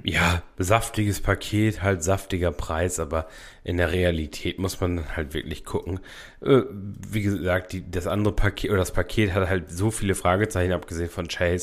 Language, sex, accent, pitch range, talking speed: German, male, German, 85-100 Hz, 170 wpm